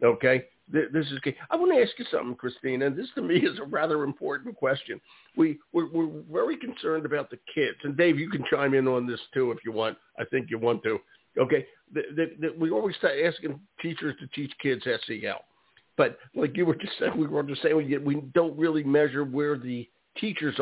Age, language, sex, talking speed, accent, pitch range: 60-79, English, male, 220 wpm, American, 135-165 Hz